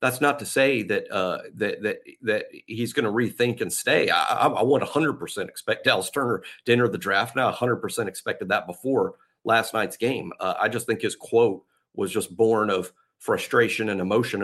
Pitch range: 105-130 Hz